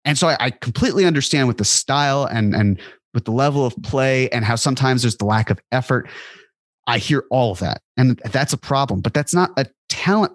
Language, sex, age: English, male, 30-49